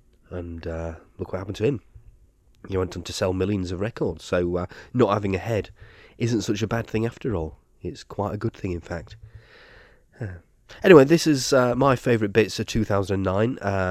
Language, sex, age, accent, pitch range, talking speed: English, male, 30-49, British, 85-105 Hz, 195 wpm